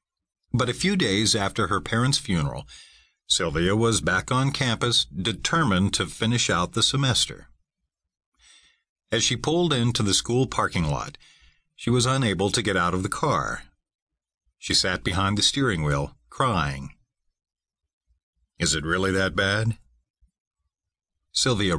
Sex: male